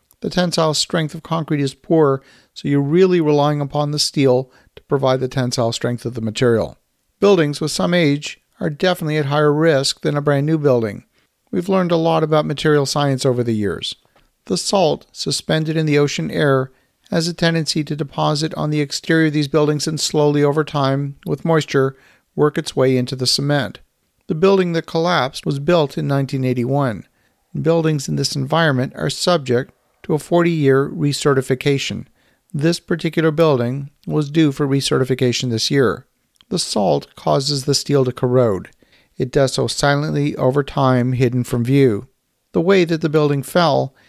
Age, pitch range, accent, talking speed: 50-69, 130-160 Hz, American, 170 wpm